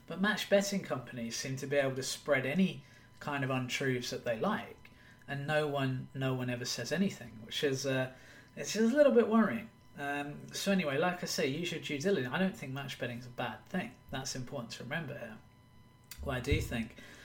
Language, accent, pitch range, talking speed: English, British, 120-145 Hz, 210 wpm